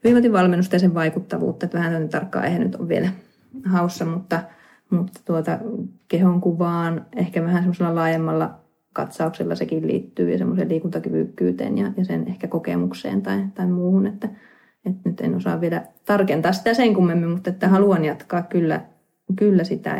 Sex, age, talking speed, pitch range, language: female, 20-39, 150 wpm, 165-190 Hz, Finnish